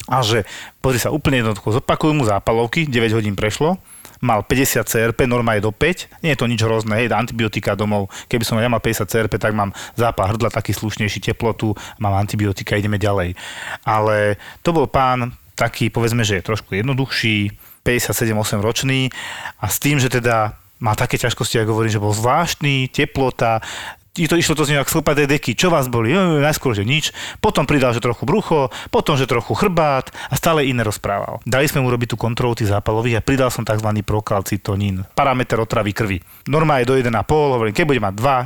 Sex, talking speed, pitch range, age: male, 195 wpm, 110-135 Hz, 30-49